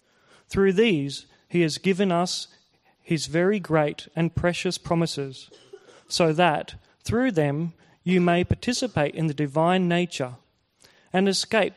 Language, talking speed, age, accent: English, 125 wpm, 40-59, Australian